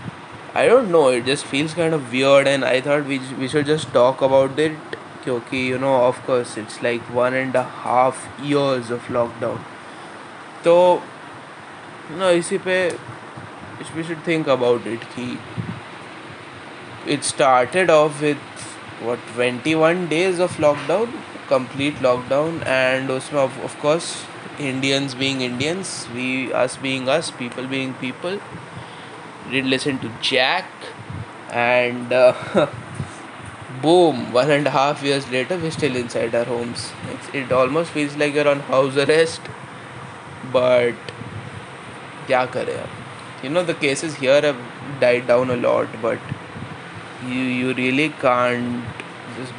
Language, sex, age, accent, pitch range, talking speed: Hindi, male, 20-39, native, 125-150 Hz, 140 wpm